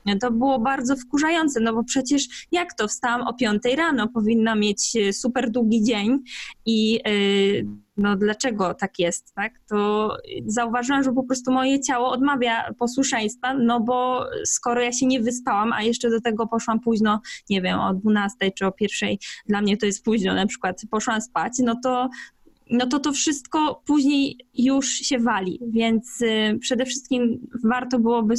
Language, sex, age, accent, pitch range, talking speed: Polish, female, 20-39, native, 210-250 Hz, 165 wpm